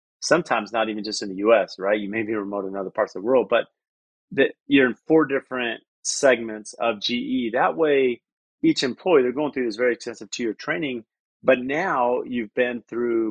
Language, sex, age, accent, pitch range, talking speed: English, male, 30-49, American, 110-130 Hz, 200 wpm